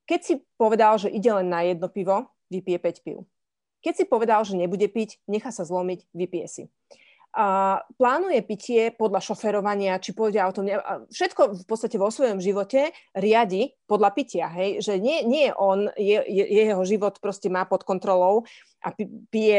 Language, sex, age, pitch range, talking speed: Slovak, female, 30-49, 185-225 Hz, 170 wpm